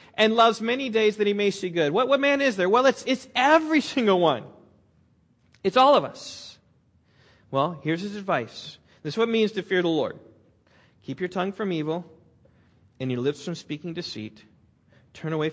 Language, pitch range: English, 120-205 Hz